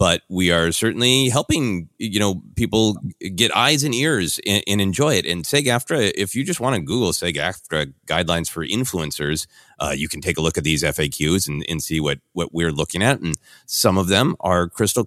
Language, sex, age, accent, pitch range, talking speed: English, male, 30-49, American, 85-120 Hz, 205 wpm